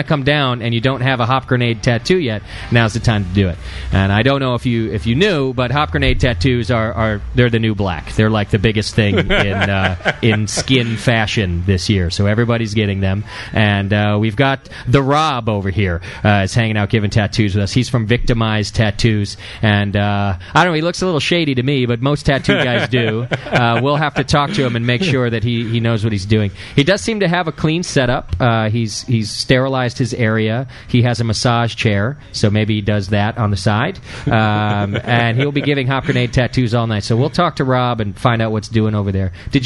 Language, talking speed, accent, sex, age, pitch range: English, 235 wpm, American, male, 30-49, 105-130 Hz